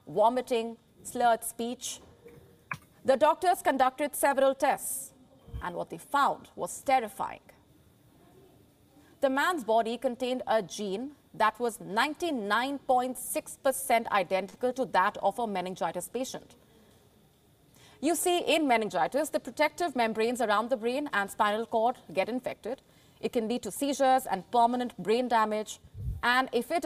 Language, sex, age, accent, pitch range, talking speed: English, female, 30-49, Indian, 215-270 Hz, 125 wpm